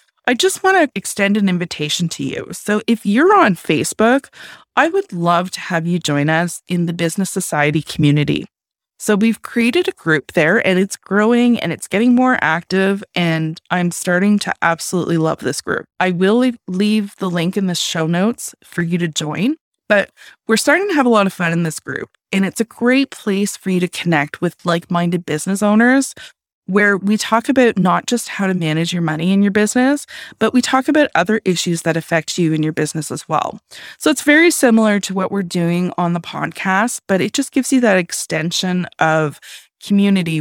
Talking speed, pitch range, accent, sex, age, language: 200 wpm, 170-220 Hz, American, female, 20-39, English